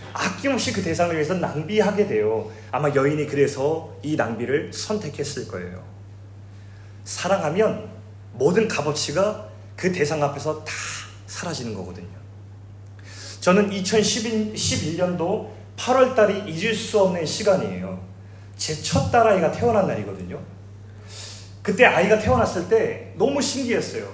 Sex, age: male, 30-49